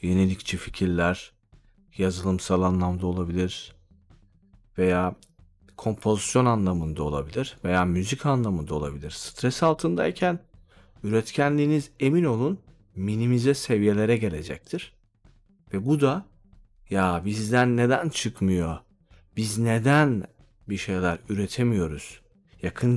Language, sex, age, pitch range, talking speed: Turkish, male, 40-59, 90-120 Hz, 90 wpm